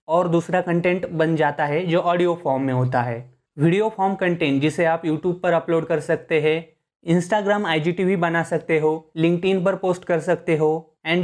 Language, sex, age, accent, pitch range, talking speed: Hindi, male, 20-39, native, 155-180 Hz, 185 wpm